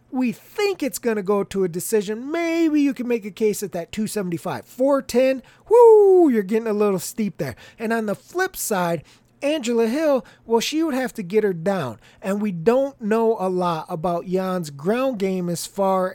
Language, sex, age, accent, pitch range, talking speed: English, male, 30-49, American, 180-255 Hz, 195 wpm